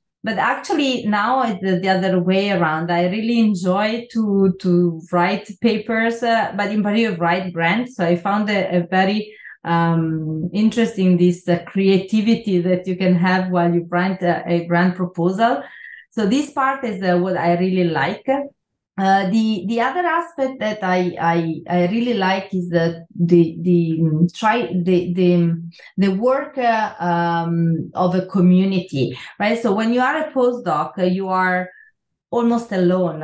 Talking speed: 165 wpm